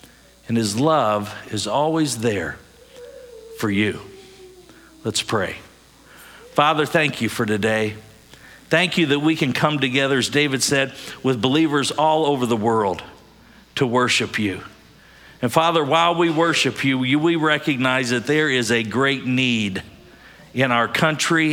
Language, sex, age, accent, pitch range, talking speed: English, male, 50-69, American, 120-155 Hz, 140 wpm